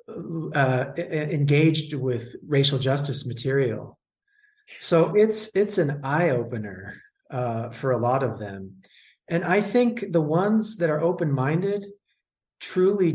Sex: male